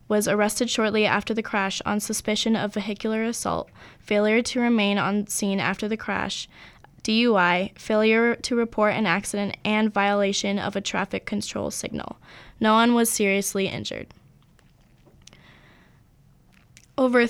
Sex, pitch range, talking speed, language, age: female, 200-230 Hz, 130 wpm, English, 10-29